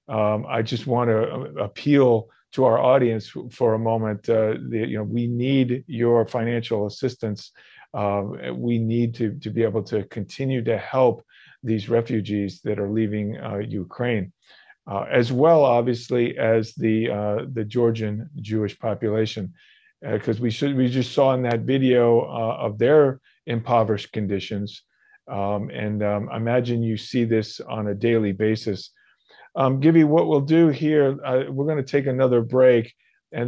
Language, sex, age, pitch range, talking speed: English, male, 40-59, 110-125 Hz, 160 wpm